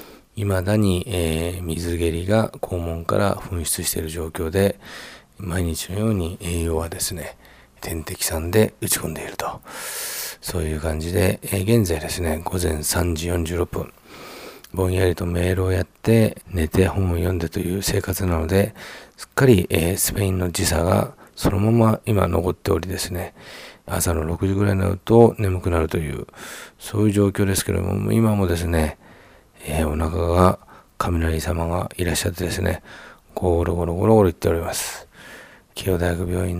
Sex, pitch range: male, 85-100 Hz